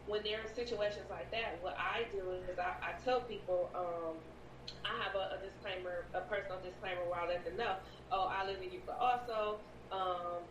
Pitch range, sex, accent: 185-220 Hz, female, American